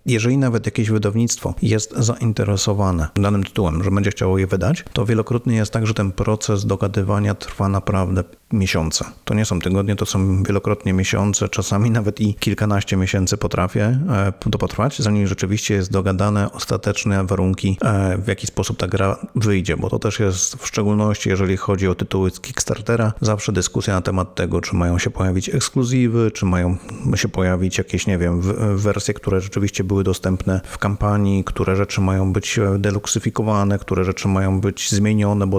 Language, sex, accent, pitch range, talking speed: Polish, male, native, 95-110 Hz, 165 wpm